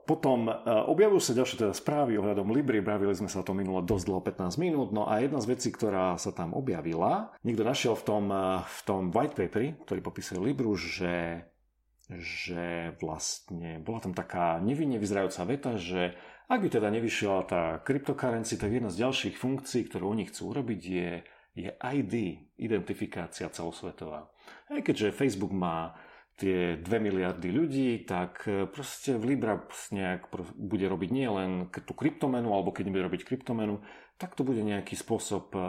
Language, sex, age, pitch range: Slovak, male, 40-59, 90-120 Hz